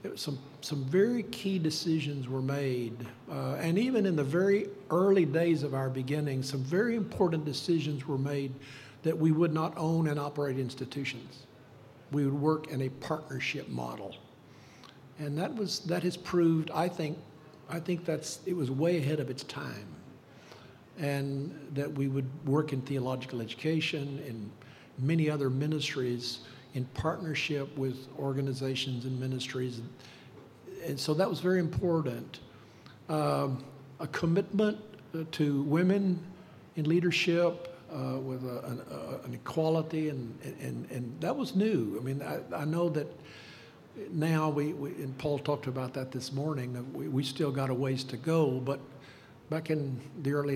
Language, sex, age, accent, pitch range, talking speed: English, male, 60-79, American, 130-160 Hz, 155 wpm